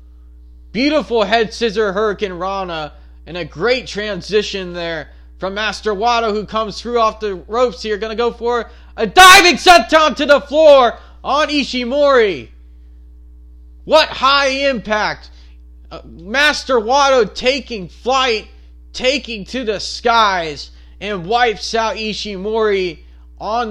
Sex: male